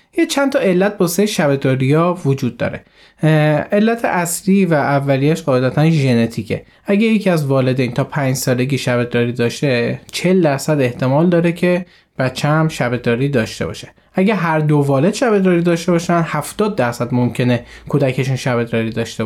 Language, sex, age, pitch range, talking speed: Persian, male, 20-39, 130-175 Hz, 145 wpm